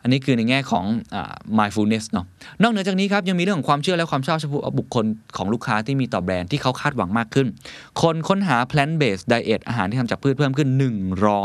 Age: 20-39